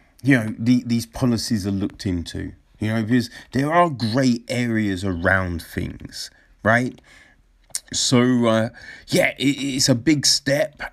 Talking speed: 145 wpm